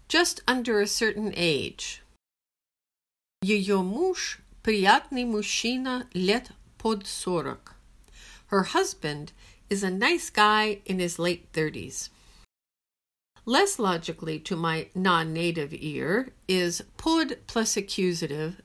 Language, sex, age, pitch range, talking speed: English, female, 50-69, 175-235 Hz, 100 wpm